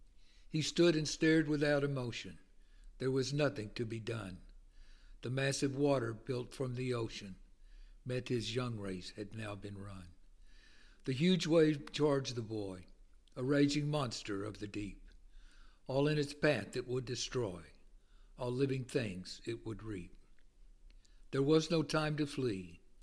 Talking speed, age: 150 wpm, 60-79